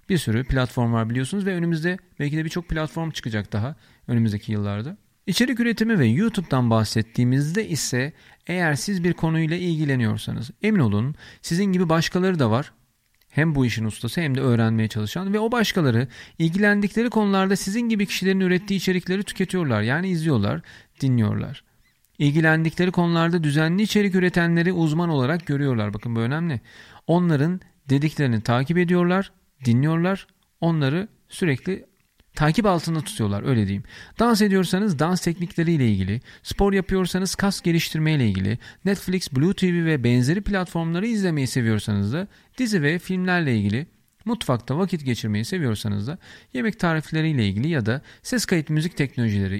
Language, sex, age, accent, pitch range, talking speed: Turkish, male, 40-59, native, 120-185 Hz, 140 wpm